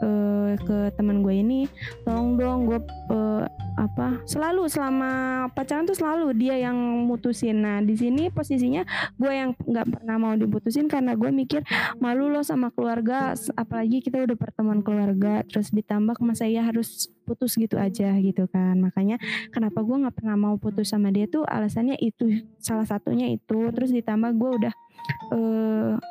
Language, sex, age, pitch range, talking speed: Indonesian, female, 20-39, 210-255 Hz, 155 wpm